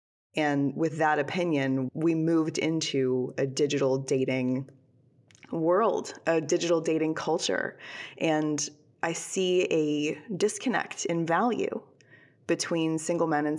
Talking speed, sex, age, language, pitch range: 115 wpm, female, 20-39, English, 140-170 Hz